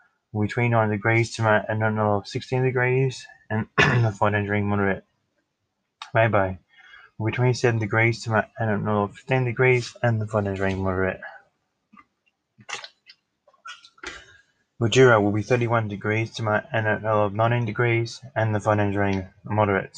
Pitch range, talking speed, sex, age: 100-115 Hz, 160 wpm, male, 20-39